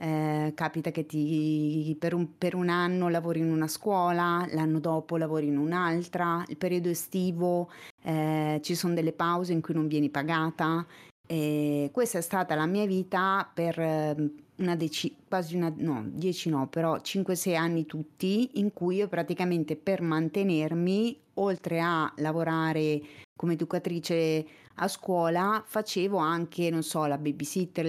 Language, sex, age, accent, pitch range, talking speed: Italian, female, 30-49, native, 155-185 Hz, 150 wpm